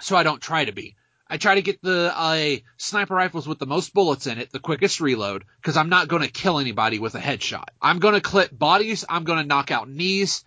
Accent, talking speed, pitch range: American, 260 wpm, 145-195 Hz